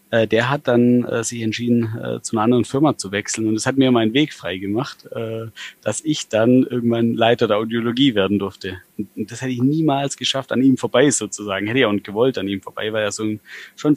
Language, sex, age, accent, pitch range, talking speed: German, male, 30-49, German, 110-125 Hz, 210 wpm